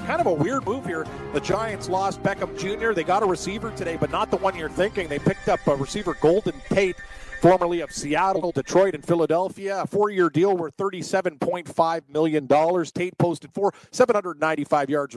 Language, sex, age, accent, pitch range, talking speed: English, male, 40-59, American, 155-175 Hz, 180 wpm